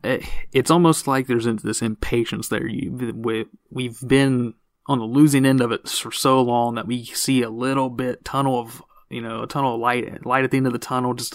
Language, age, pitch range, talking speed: English, 30-49, 115-135 Hz, 215 wpm